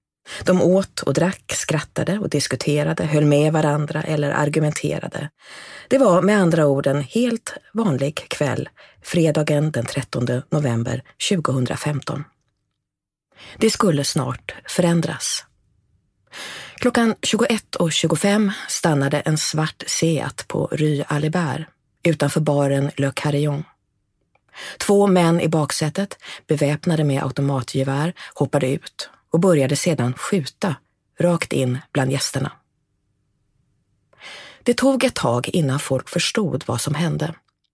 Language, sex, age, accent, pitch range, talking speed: English, female, 30-49, Swedish, 140-175 Hz, 115 wpm